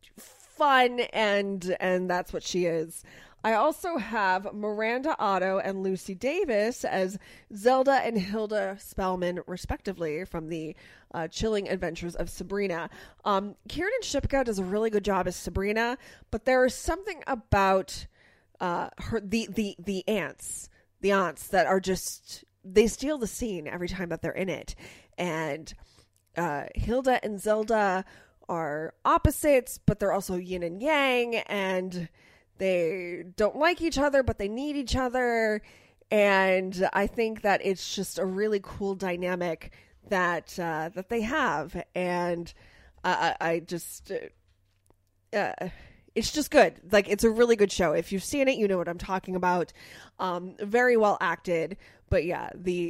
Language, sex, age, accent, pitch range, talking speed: English, female, 20-39, American, 175-225 Hz, 155 wpm